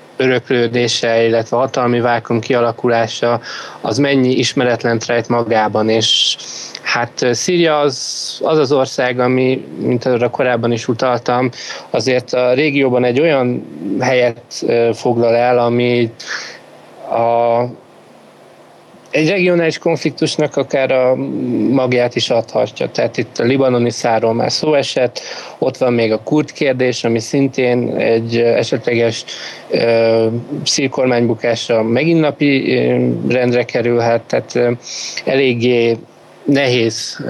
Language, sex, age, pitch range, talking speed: Hungarian, male, 20-39, 115-130 Hz, 110 wpm